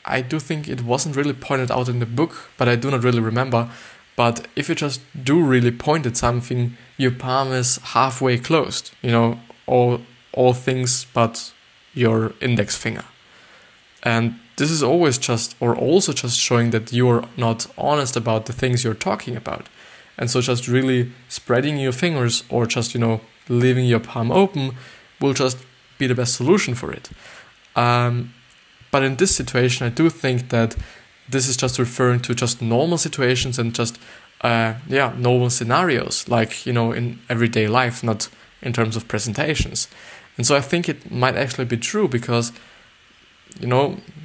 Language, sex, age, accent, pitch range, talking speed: English, male, 20-39, German, 120-135 Hz, 175 wpm